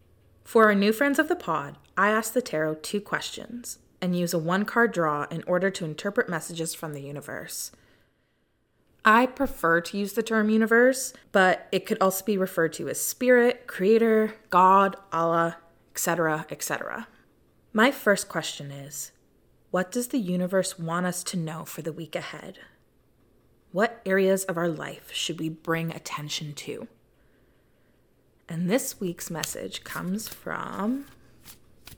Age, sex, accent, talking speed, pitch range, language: 20-39, female, American, 150 wpm, 165-220 Hz, English